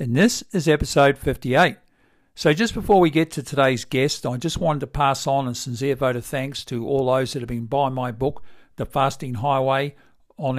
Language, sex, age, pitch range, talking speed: English, male, 50-69, 125-145 Hz, 210 wpm